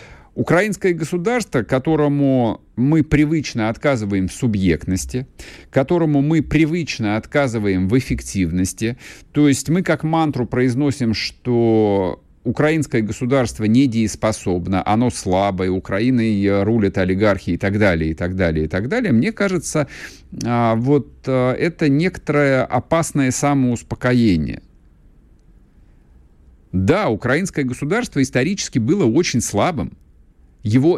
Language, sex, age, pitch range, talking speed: Russian, male, 50-69, 90-140 Hz, 105 wpm